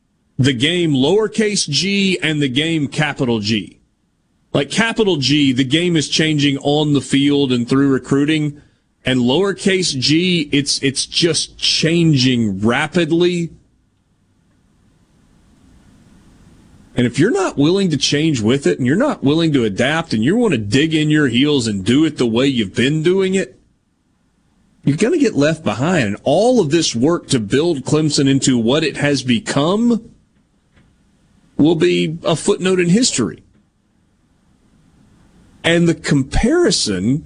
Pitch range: 125-175 Hz